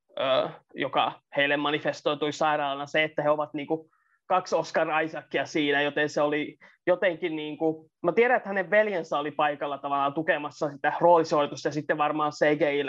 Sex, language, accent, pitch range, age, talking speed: male, Finnish, native, 150-200 Hz, 20-39, 165 wpm